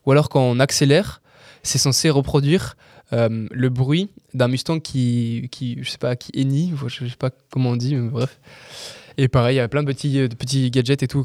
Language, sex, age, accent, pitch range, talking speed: French, male, 20-39, French, 125-150 Hz, 220 wpm